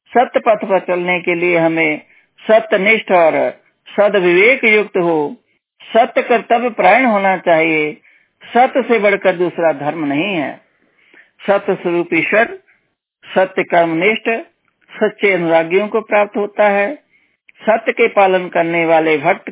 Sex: male